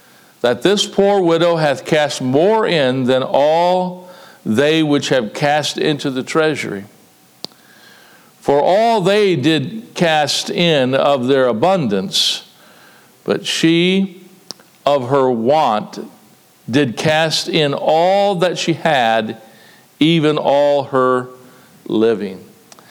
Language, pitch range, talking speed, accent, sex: English, 125-155 Hz, 110 wpm, American, male